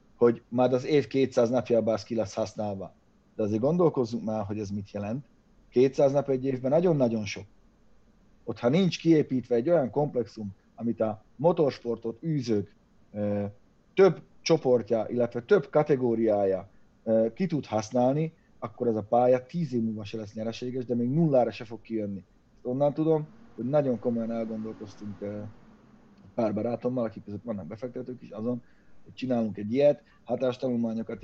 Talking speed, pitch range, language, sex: 150 wpm, 105-130 Hz, Hungarian, male